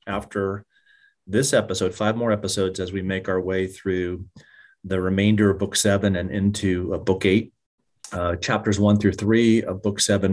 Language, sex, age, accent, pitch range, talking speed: English, male, 40-59, American, 95-110 Hz, 165 wpm